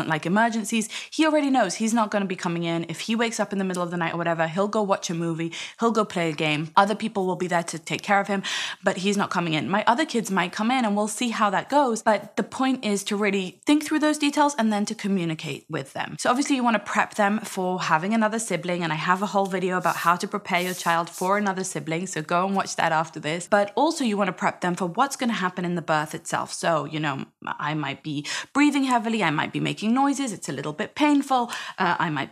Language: English